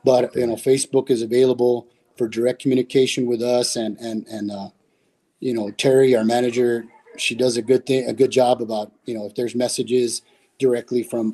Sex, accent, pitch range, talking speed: male, American, 115-130 Hz, 190 wpm